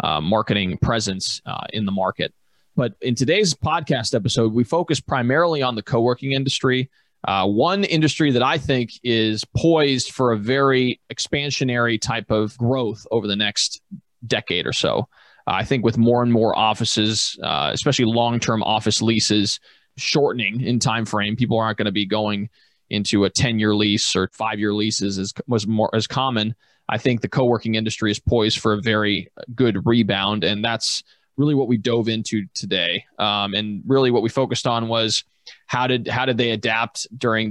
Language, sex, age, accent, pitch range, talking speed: English, male, 20-39, American, 105-125 Hz, 175 wpm